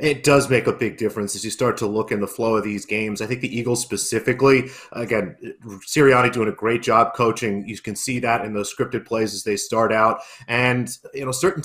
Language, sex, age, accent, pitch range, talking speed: English, male, 30-49, American, 110-130 Hz, 230 wpm